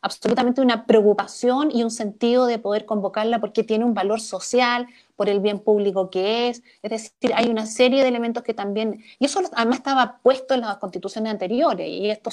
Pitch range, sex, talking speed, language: 200-250 Hz, female, 195 wpm, Spanish